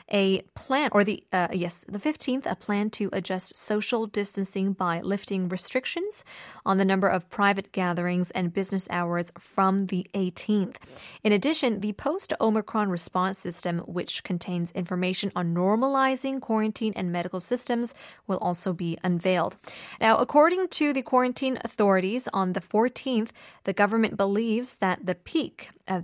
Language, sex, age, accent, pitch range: Korean, female, 20-39, American, 185-250 Hz